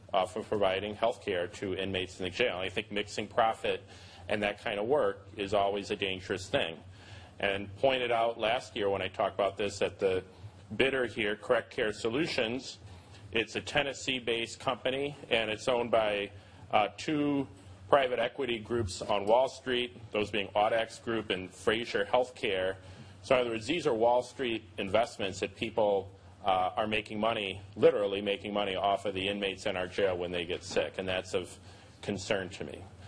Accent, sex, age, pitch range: American, male, 40-59, 95-115 Hz